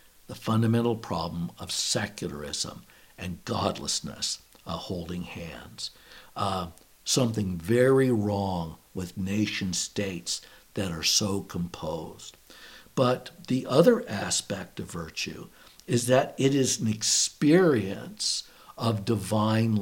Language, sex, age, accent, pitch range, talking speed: English, male, 60-79, American, 105-130 Hz, 105 wpm